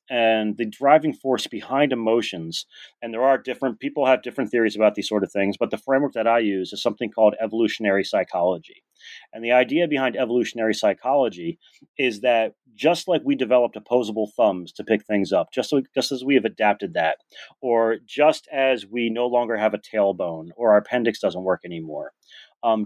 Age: 30-49